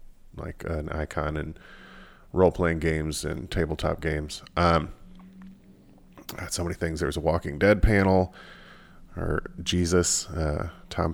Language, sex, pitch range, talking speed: English, male, 80-95 Hz, 125 wpm